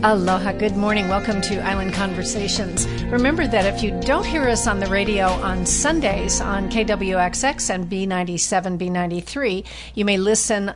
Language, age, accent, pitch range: English, 50-69, American, 185-225 Hz